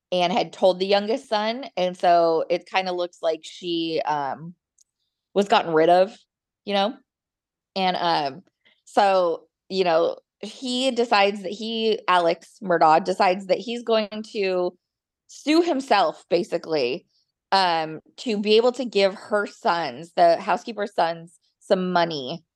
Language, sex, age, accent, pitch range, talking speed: English, female, 20-39, American, 170-210 Hz, 140 wpm